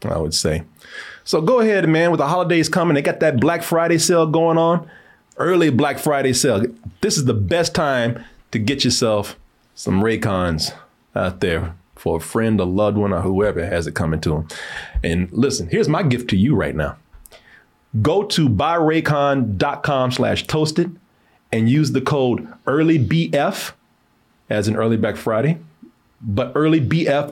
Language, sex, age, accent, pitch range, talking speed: English, male, 30-49, American, 115-160 Hz, 165 wpm